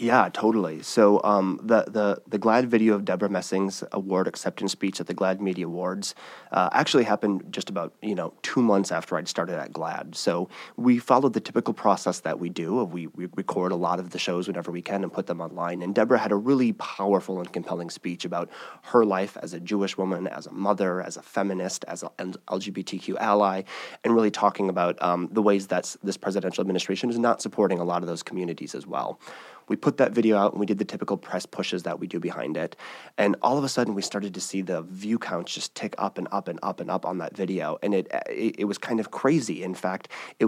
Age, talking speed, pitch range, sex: 30-49, 235 wpm, 90-110 Hz, male